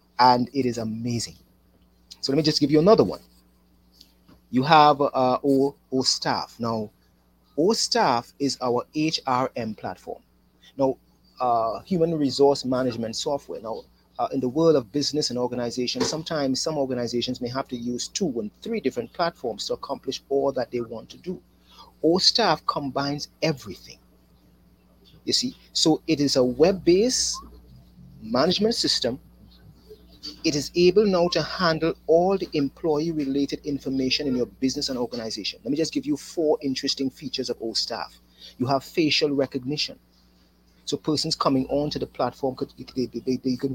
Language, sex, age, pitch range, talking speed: English, male, 30-49, 120-155 Hz, 155 wpm